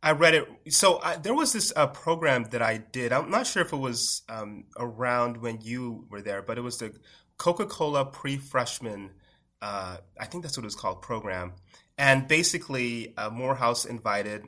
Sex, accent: male, American